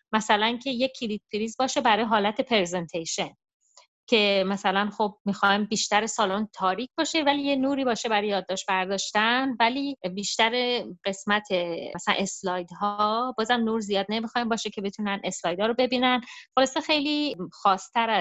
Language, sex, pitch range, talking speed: Persian, female, 190-240 Hz, 140 wpm